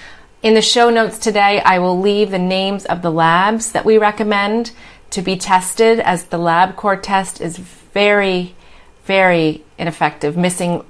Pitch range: 165-205 Hz